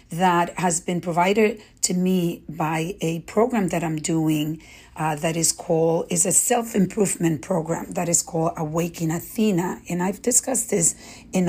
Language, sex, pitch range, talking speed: English, female, 165-190 Hz, 155 wpm